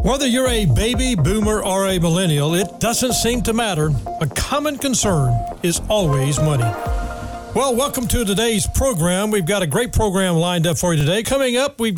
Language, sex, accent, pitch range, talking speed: English, male, American, 160-230 Hz, 185 wpm